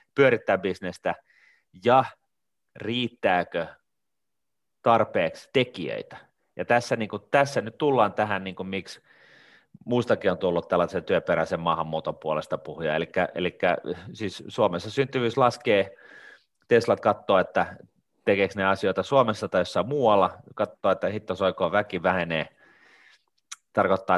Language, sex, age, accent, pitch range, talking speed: Finnish, male, 30-49, native, 85-120 Hz, 115 wpm